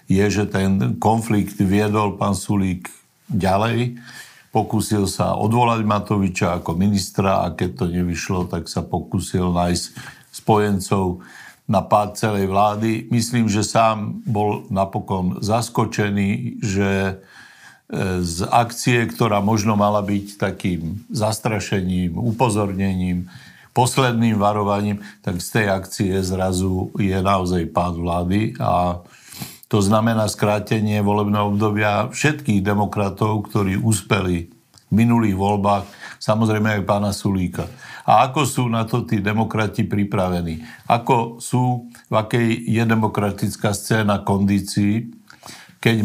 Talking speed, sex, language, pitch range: 115 wpm, male, Slovak, 95-110 Hz